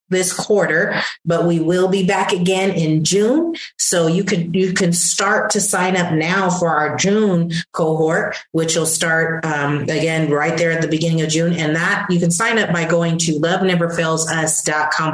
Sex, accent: female, American